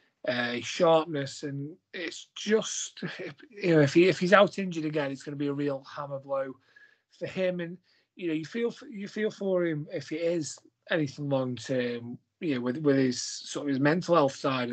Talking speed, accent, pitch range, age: 210 wpm, British, 135-165 Hz, 30-49